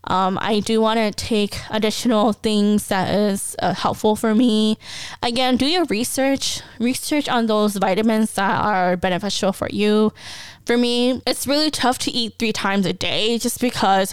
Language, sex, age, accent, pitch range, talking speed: English, female, 10-29, American, 200-245 Hz, 170 wpm